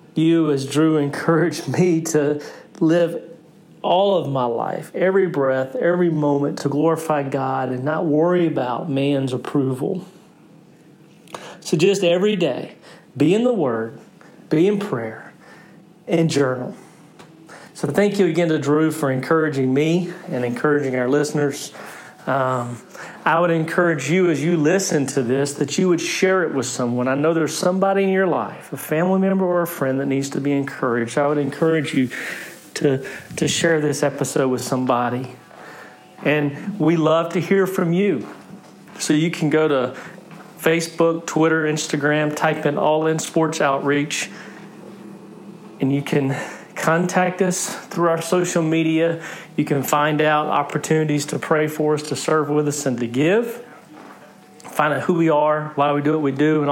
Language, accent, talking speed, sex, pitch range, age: English, American, 165 wpm, male, 145-175 Hz, 40-59